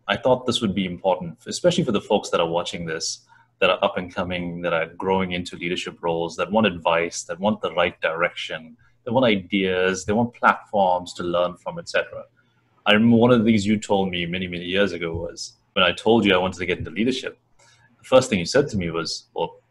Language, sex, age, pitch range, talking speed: English, male, 30-49, 90-110 Hz, 230 wpm